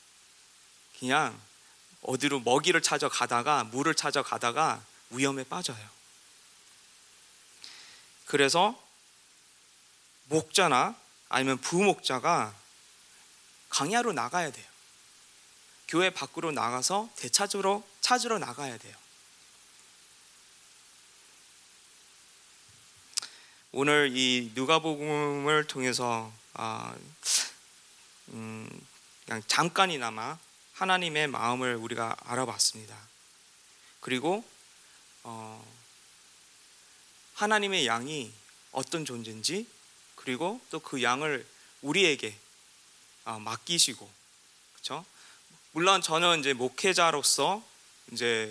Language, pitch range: Korean, 120-180 Hz